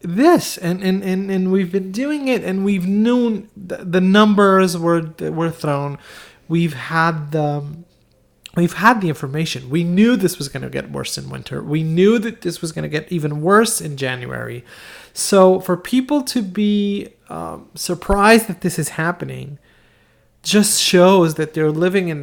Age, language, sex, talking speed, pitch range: 30-49, English, male, 175 wpm, 135-190 Hz